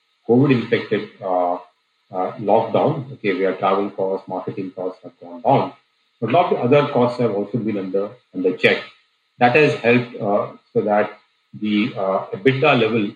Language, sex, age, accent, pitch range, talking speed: English, male, 40-59, Indian, 100-130 Hz, 165 wpm